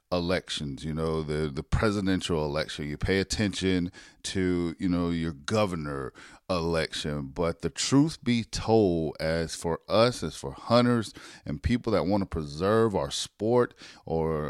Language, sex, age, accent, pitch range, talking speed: English, male, 40-59, American, 85-105 Hz, 150 wpm